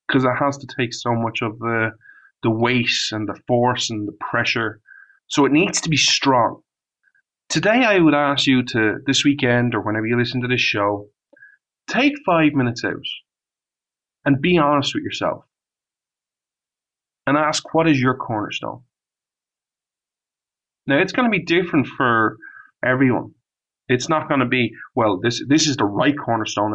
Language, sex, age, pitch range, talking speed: English, male, 30-49, 120-160 Hz, 165 wpm